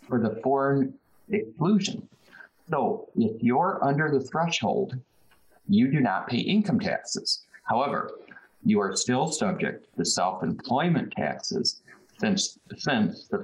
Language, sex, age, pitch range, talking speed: English, male, 50-69, 125-205 Hz, 120 wpm